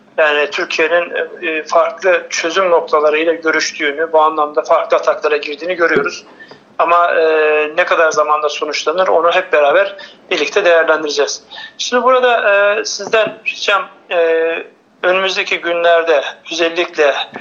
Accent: native